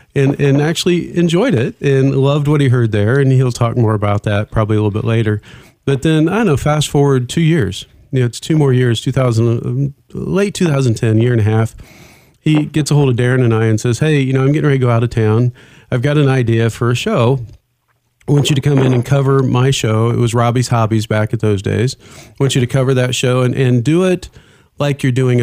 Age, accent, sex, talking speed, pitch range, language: 40-59, American, male, 245 wpm, 115-145 Hz, English